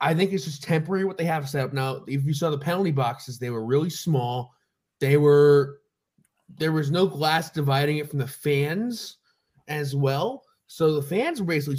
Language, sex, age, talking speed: English, male, 20-39, 200 wpm